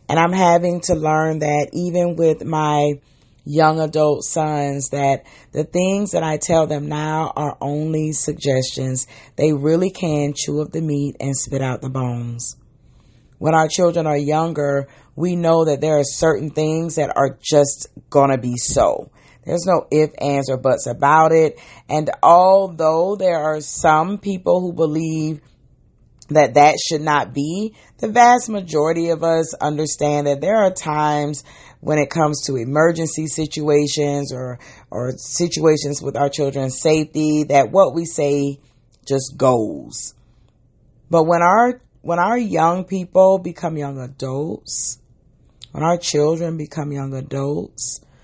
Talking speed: 150 wpm